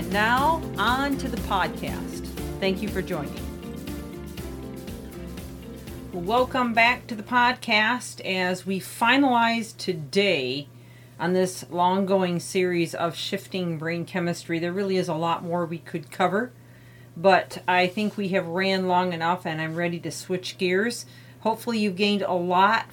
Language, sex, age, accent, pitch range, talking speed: English, female, 40-59, American, 165-195 Hz, 145 wpm